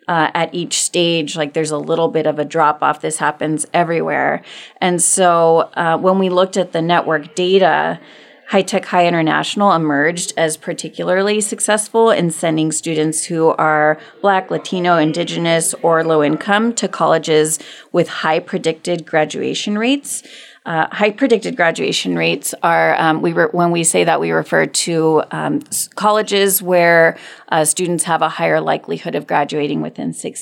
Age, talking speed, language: 30-49, 160 wpm, English